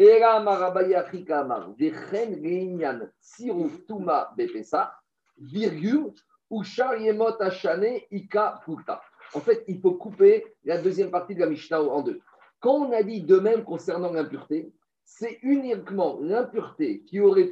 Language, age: French, 50-69